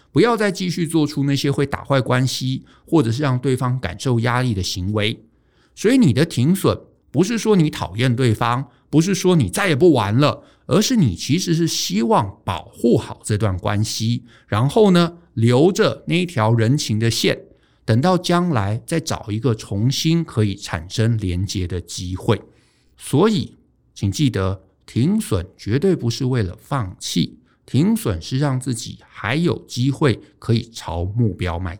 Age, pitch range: 50-69, 105-155 Hz